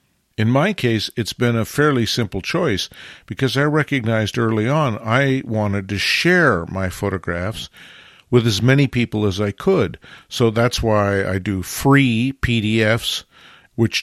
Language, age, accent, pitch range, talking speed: English, 50-69, American, 100-130 Hz, 150 wpm